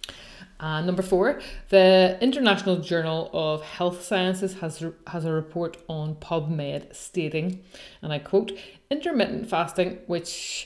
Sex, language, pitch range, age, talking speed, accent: female, English, 160-185 Hz, 30-49, 125 wpm, Irish